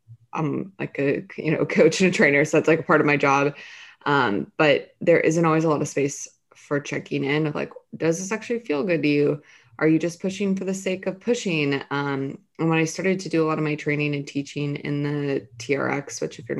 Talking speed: 240 wpm